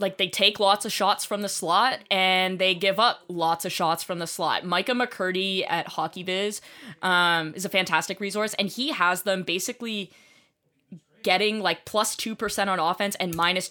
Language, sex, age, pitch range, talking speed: English, female, 10-29, 175-210 Hz, 190 wpm